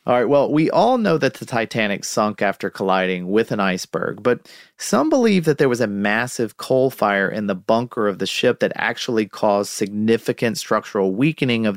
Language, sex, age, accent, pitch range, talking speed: English, male, 40-59, American, 105-135 Hz, 195 wpm